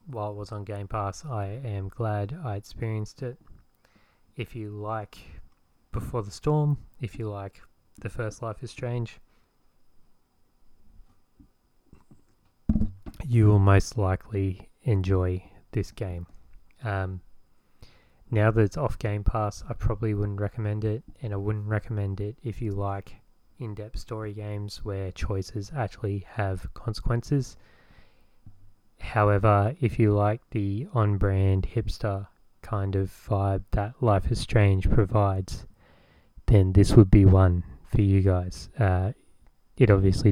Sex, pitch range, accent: male, 95-110 Hz, Australian